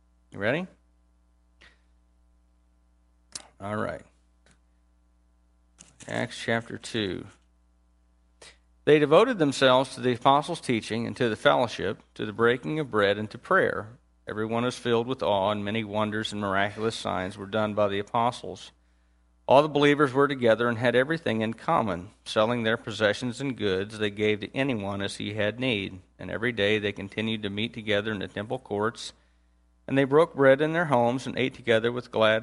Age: 50-69